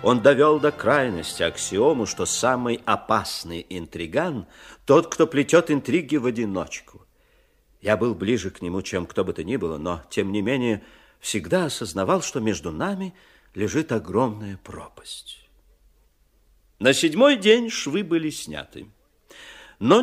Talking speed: 135 wpm